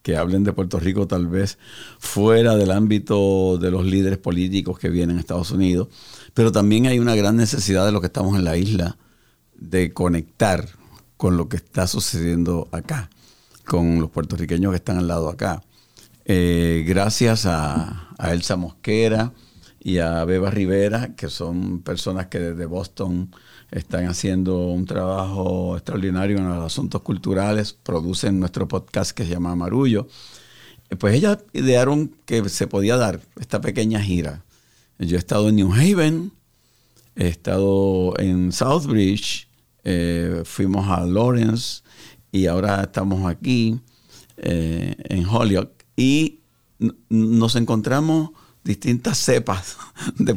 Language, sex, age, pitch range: English, male, 50-69, 90-110 Hz